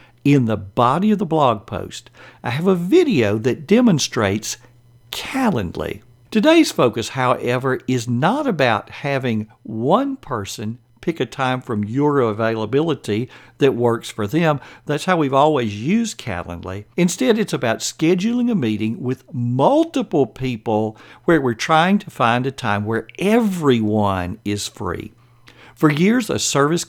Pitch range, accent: 110-160 Hz, American